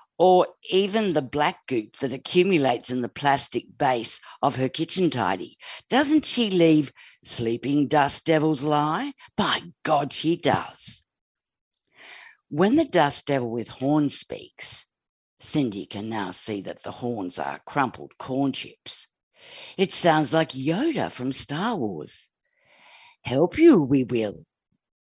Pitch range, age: 135-175 Hz, 50-69